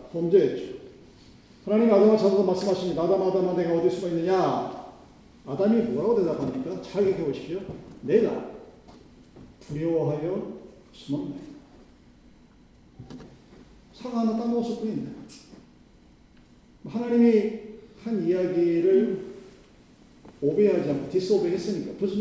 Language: Korean